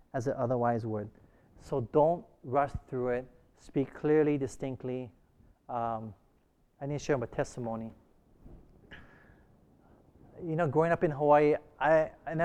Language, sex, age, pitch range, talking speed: English, male, 30-49, 130-190 Hz, 130 wpm